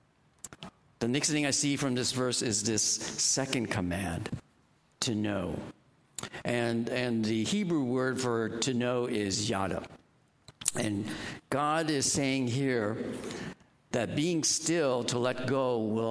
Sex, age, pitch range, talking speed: male, 60-79, 105-130 Hz, 135 wpm